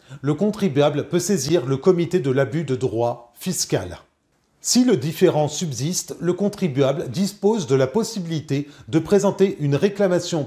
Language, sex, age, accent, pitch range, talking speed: French, male, 40-59, French, 135-175 Hz, 145 wpm